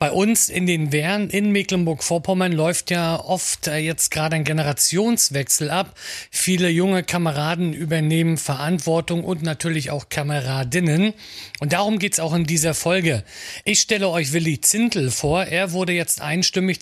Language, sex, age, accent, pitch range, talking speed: German, male, 40-59, German, 150-185 Hz, 150 wpm